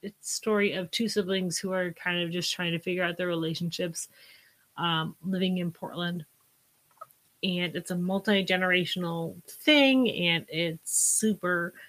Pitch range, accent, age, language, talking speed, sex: 180-215 Hz, American, 30-49, English, 140 wpm, female